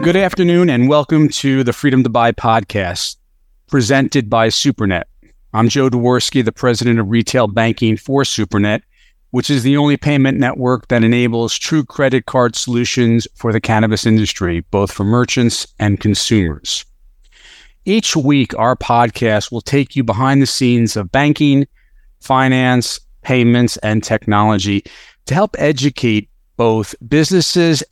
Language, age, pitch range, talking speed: English, 40-59, 105-135 Hz, 140 wpm